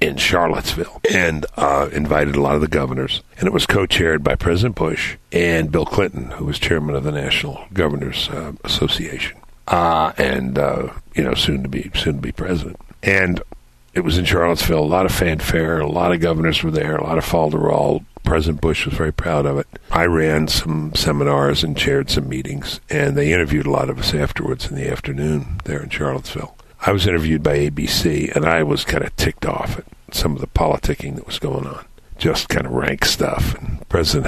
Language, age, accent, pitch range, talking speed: English, 60-79, American, 75-90 Hz, 210 wpm